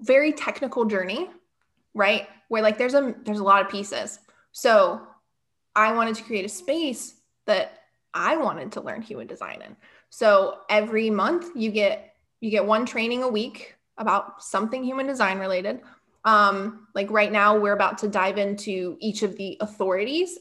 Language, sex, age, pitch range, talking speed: English, female, 20-39, 200-235 Hz, 170 wpm